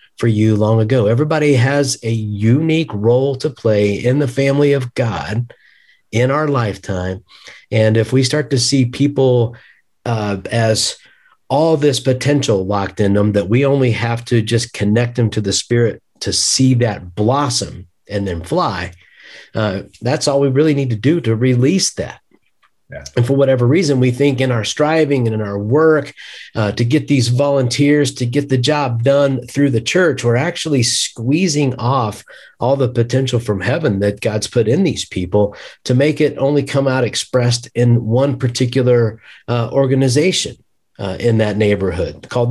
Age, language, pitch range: 50-69, English, 105-135 Hz